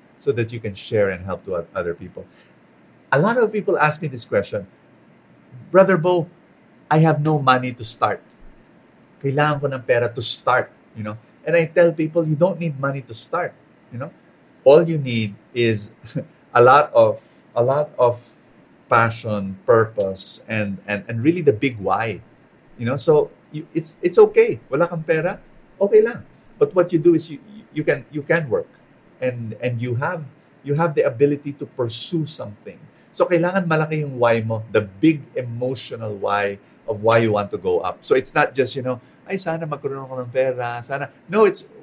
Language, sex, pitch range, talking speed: English, male, 115-165 Hz, 185 wpm